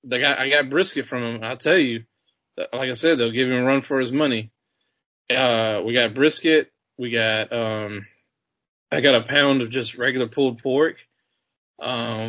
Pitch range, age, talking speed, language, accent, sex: 115-130 Hz, 20-39, 185 wpm, English, American, male